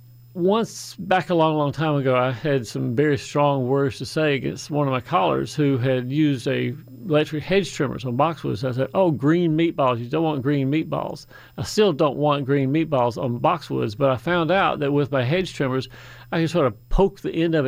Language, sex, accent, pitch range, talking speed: English, male, American, 130-155 Hz, 215 wpm